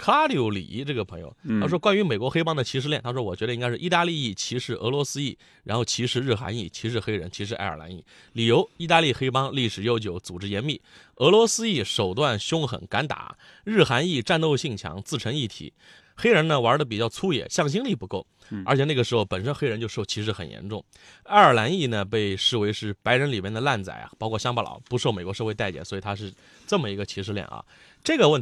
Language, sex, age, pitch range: Chinese, male, 30-49, 100-145 Hz